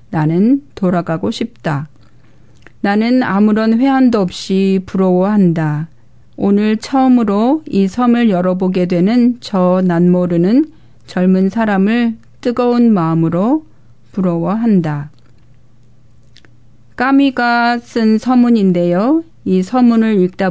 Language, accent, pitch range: Korean, native, 175-235 Hz